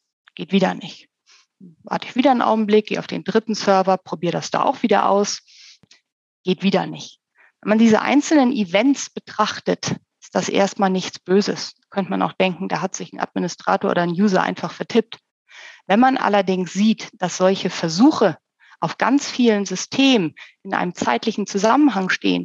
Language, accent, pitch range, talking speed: German, German, 195-245 Hz, 170 wpm